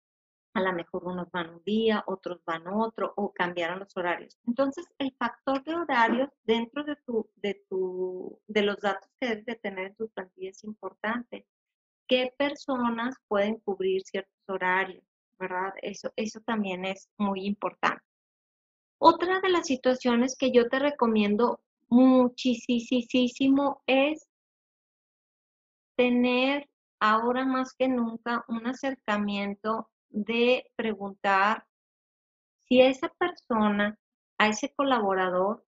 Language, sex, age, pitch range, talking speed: Spanish, female, 30-49, 200-260 Hz, 120 wpm